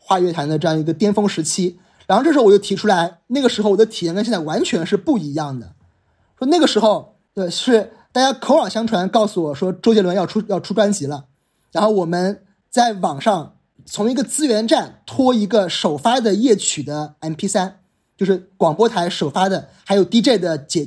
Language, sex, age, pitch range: Chinese, male, 20-39, 165-225 Hz